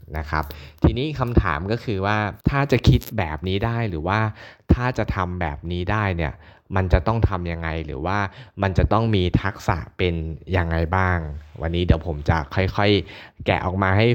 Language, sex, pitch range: Thai, male, 85-110 Hz